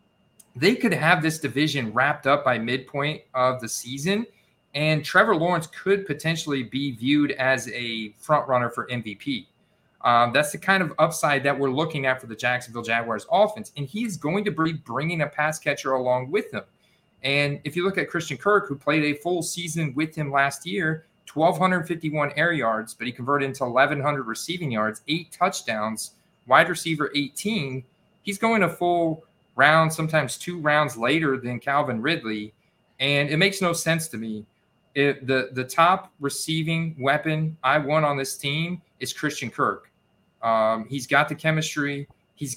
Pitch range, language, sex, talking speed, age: 135-160 Hz, English, male, 175 wpm, 30-49